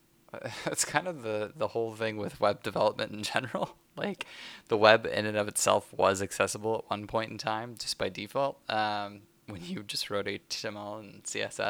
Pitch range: 95-110 Hz